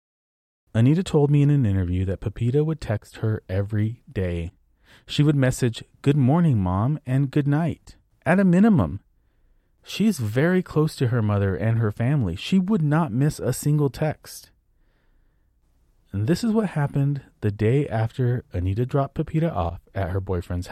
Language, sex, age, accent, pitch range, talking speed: English, male, 30-49, American, 105-150 Hz, 160 wpm